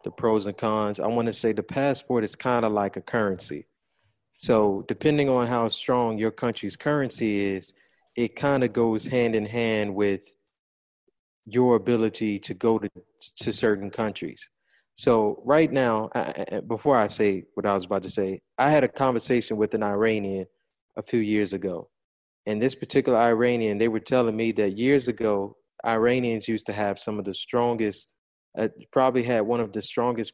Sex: male